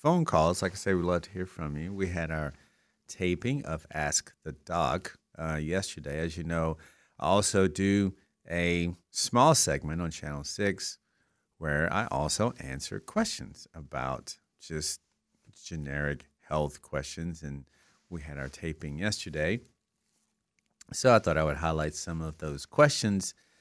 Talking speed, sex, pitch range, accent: 150 wpm, male, 75-95 Hz, American